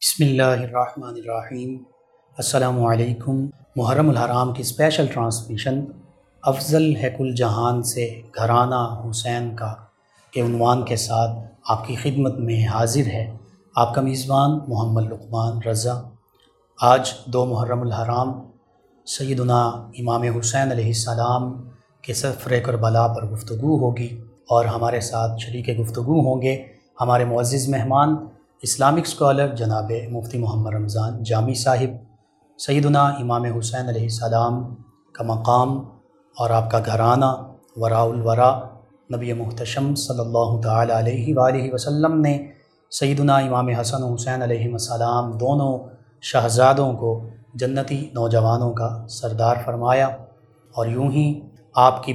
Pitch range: 115-130 Hz